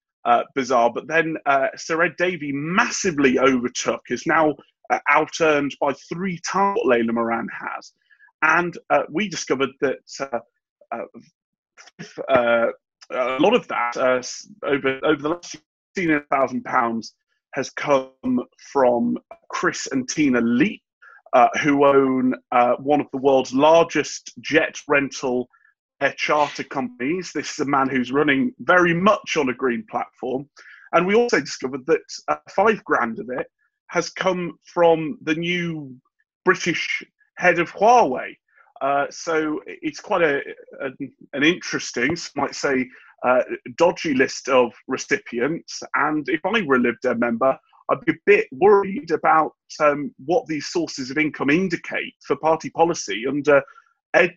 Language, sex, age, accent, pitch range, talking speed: English, male, 30-49, British, 135-180 Hz, 145 wpm